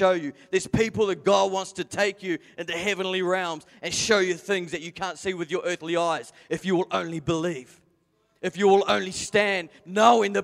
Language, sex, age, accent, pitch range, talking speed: English, male, 30-49, Australian, 150-200 Hz, 215 wpm